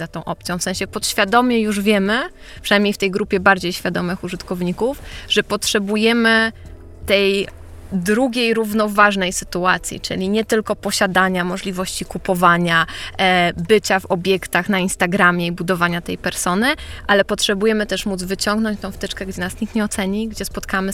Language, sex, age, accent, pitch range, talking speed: Polish, female, 20-39, native, 185-210 Hz, 145 wpm